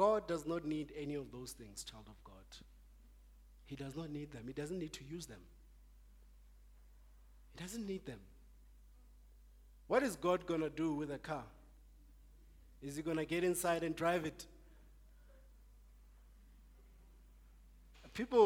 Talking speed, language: 145 wpm, English